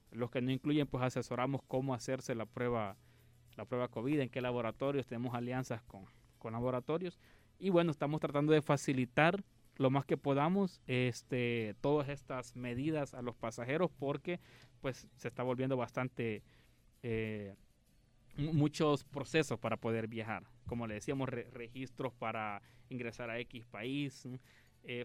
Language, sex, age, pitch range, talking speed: Spanish, male, 30-49, 120-145 Hz, 135 wpm